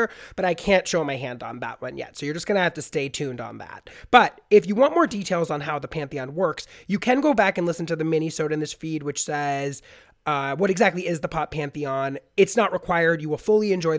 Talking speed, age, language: 260 wpm, 30-49, English